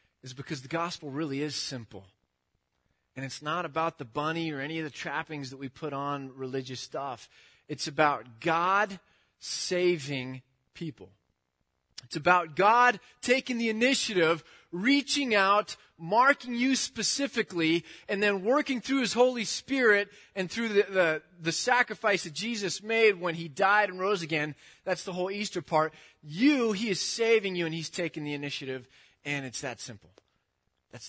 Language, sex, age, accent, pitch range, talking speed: English, male, 30-49, American, 145-205 Hz, 155 wpm